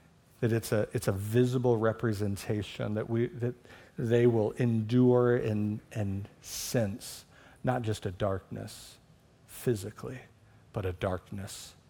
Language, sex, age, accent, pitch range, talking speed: English, male, 50-69, American, 115-150 Hz, 120 wpm